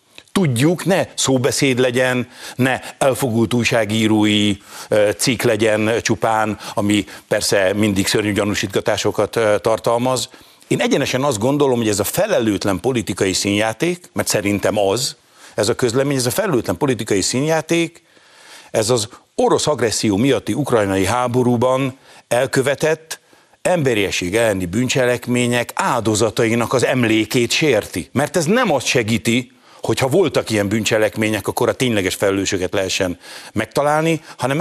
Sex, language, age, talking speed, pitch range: male, Hungarian, 60-79, 120 wpm, 110-135 Hz